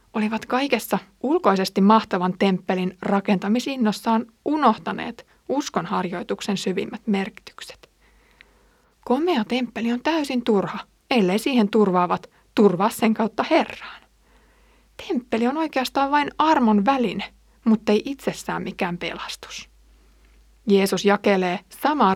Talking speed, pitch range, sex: 95 wpm, 190-235 Hz, female